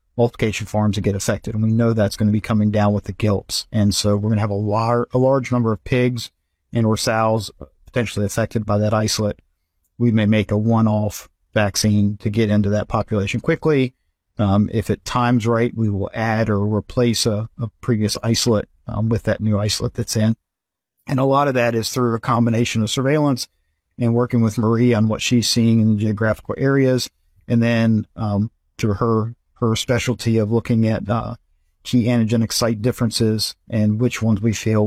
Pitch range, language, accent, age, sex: 105-120 Hz, Chinese, American, 50-69, male